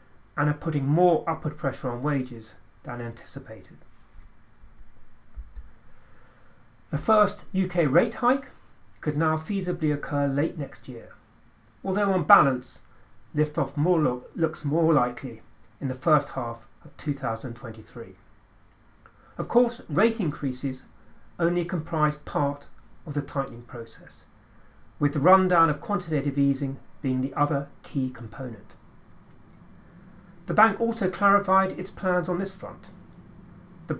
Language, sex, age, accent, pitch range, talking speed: English, male, 40-59, British, 115-165 Hz, 120 wpm